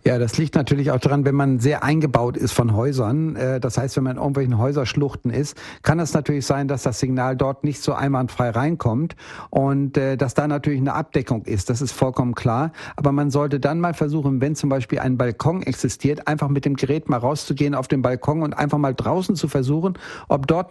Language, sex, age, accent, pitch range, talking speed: German, male, 60-79, German, 135-150 Hz, 215 wpm